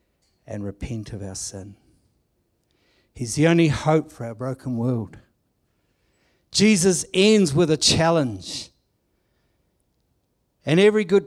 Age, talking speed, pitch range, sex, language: 60-79, 110 wpm, 105-150 Hz, male, English